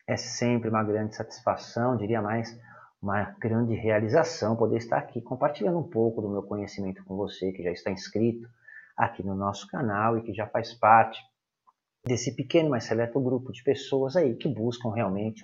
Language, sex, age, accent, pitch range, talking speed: Portuguese, male, 40-59, Brazilian, 105-125 Hz, 175 wpm